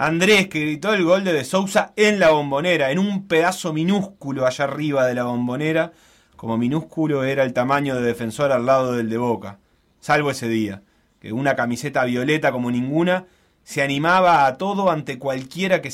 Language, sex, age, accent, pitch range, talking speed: Spanish, male, 30-49, Argentinian, 125-170 Hz, 180 wpm